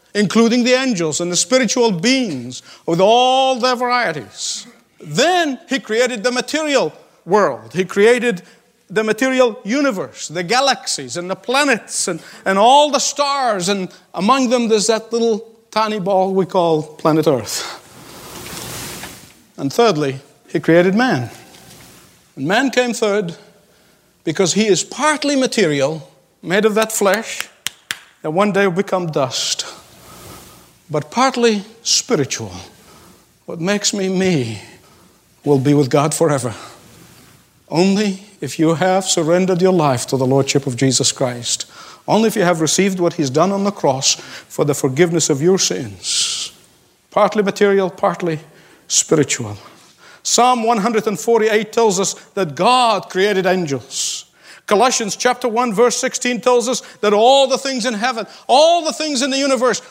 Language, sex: English, male